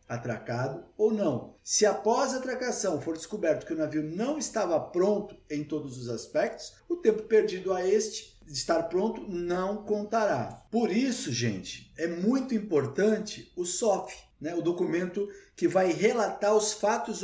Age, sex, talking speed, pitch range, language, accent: 50-69, male, 155 wpm, 180-220 Hz, Portuguese, Brazilian